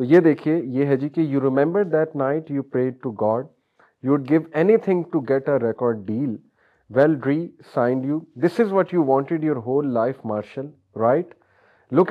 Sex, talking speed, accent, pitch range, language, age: male, 170 wpm, Indian, 115-140 Hz, English, 30-49